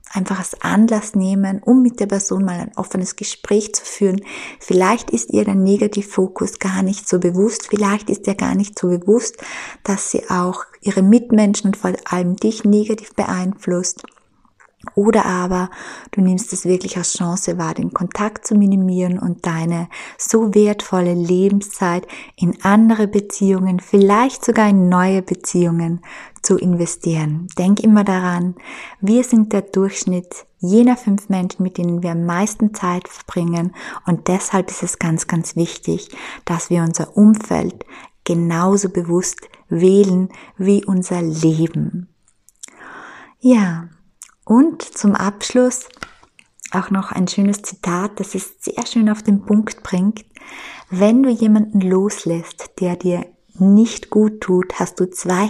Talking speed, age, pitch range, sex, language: 145 wpm, 20-39, 180-210 Hz, female, German